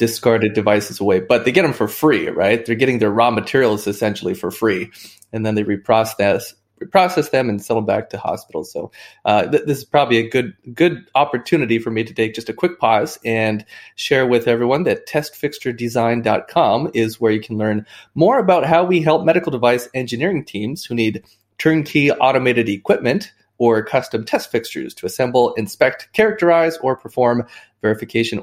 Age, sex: 30-49, male